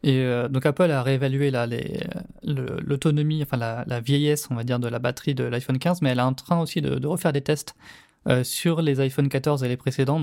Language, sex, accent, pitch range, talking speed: French, male, French, 130-165 Hz, 240 wpm